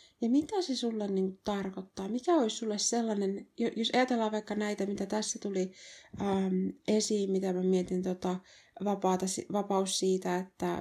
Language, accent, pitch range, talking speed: Finnish, native, 185-215 Hz, 150 wpm